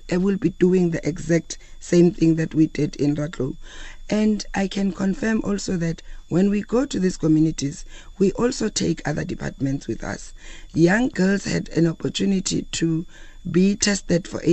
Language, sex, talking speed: English, female, 170 wpm